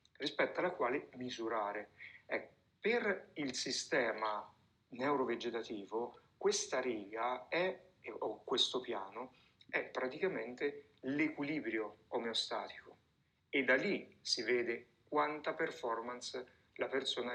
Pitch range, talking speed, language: 120-150 Hz, 95 wpm, Italian